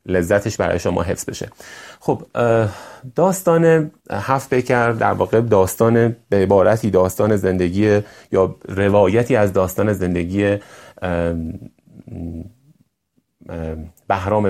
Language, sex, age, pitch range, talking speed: Persian, male, 30-49, 90-110 Hz, 90 wpm